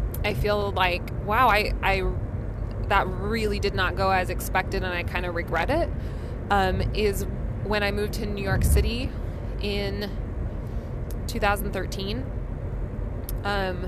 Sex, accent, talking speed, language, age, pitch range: female, American, 120 wpm, English, 20-39, 95-120 Hz